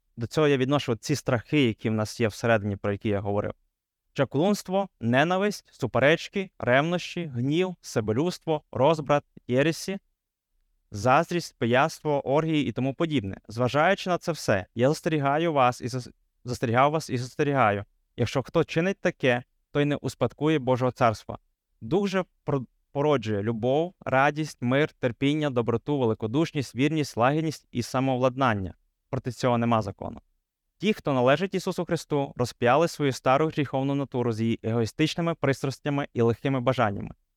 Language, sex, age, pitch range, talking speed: Ukrainian, male, 20-39, 115-150 Hz, 135 wpm